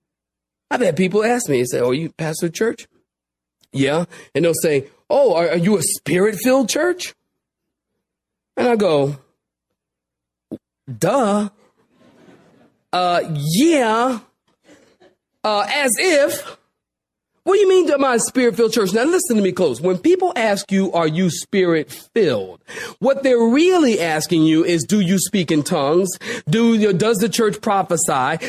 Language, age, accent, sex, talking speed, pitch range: English, 40-59, American, male, 155 wpm, 175-250 Hz